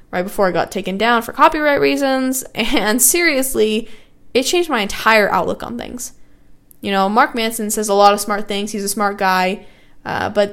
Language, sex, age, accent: English, female, 10-29, American